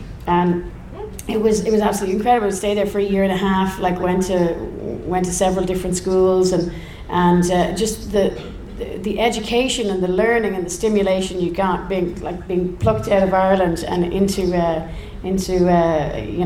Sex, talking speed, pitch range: female, 190 wpm, 175-195 Hz